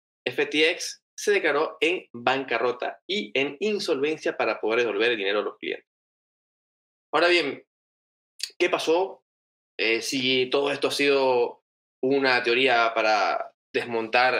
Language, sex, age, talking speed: Spanish, male, 20-39, 125 wpm